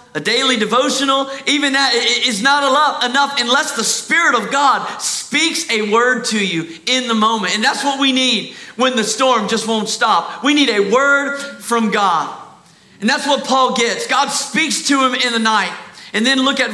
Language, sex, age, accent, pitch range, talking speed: English, male, 40-59, American, 215-270 Hz, 195 wpm